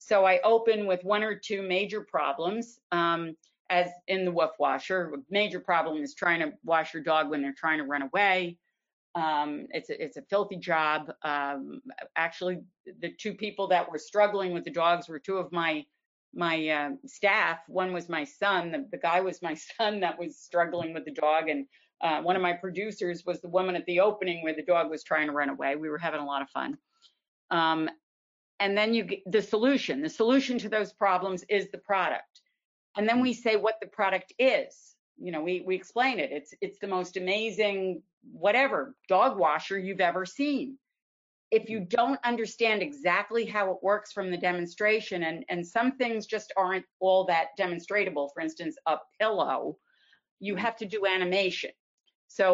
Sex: female